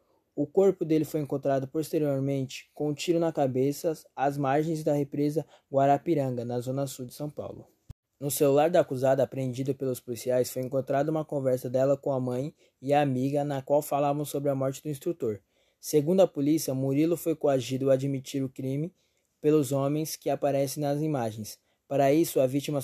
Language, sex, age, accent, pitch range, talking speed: Portuguese, male, 20-39, Brazilian, 135-155 Hz, 180 wpm